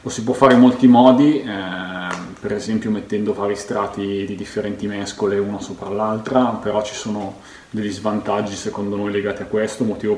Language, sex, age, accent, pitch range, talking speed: Italian, male, 30-49, native, 100-110 Hz, 175 wpm